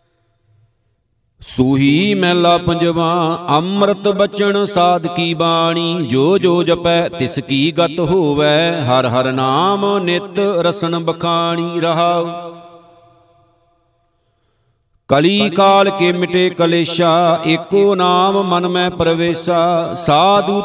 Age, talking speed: 50-69, 95 wpm